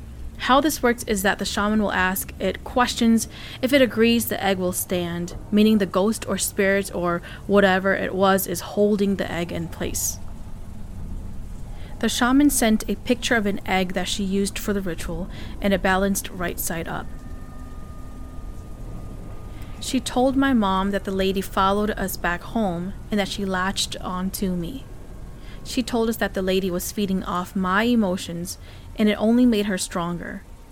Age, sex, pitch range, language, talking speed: 20-39, female, 180-215 Hz, English, 170 wpm